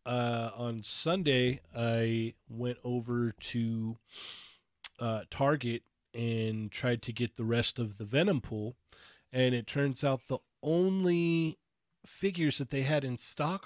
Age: 30-49